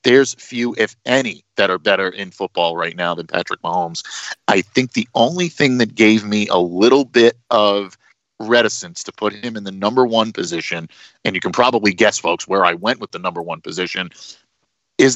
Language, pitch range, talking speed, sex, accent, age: English, 100-130 Hz, 200 wpm, male, American, 40-59